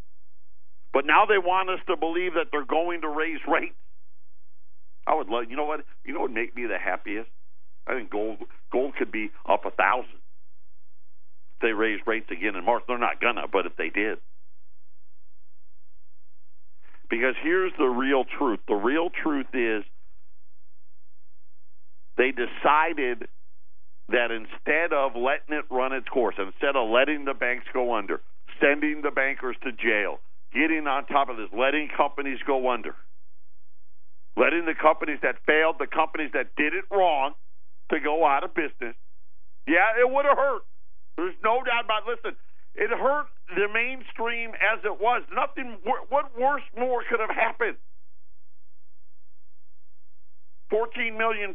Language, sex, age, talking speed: English, male, 50-69, 155 wpm